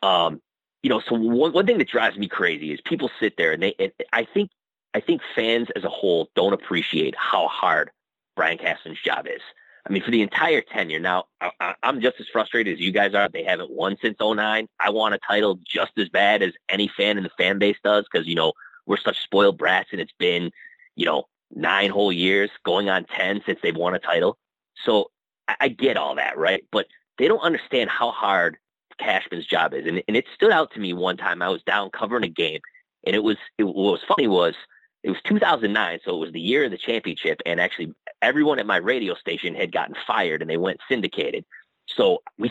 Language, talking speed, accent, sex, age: English, 225 wpm, American, male, 30-49